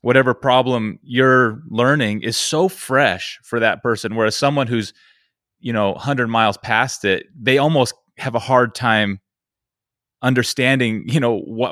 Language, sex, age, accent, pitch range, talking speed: English, male, 30-49, American, 105-125 Hz, 150 wpm